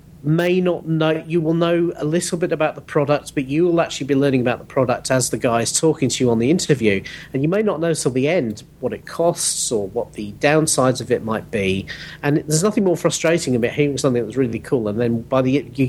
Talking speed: 250 wpm